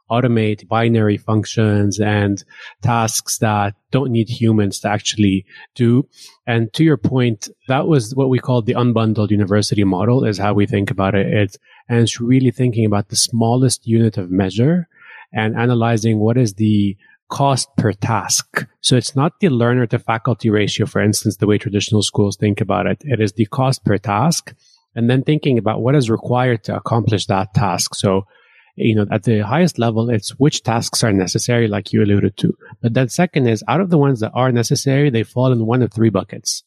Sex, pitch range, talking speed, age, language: male, 105-130 Hz, 195 wpm, 30-49, English